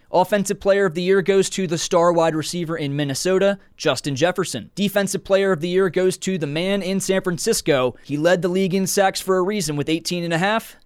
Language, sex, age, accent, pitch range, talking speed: English, male, 20-39, American, 160-195 Hz, 225 wpm